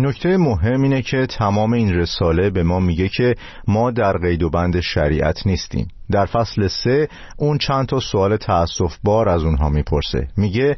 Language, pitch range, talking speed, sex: Persian, 85-115 Hz, 175 wpm, male